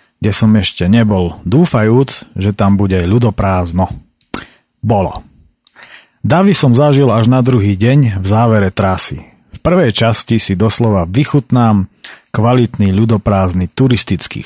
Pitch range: 95-125 Hz